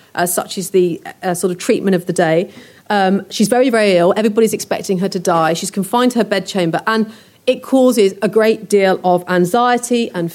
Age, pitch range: 40-59, 185-235 Hz